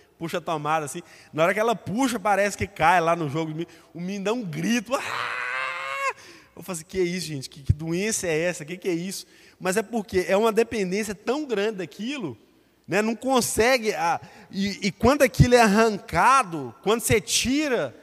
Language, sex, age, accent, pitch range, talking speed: Portuguese, male, 20-39, Brazilian, 155-210 Hz, 185 wpm